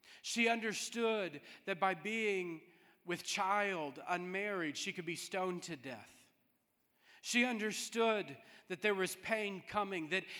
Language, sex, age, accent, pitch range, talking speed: English, male, 40-59, American, 175-225 Hz, 125 wpm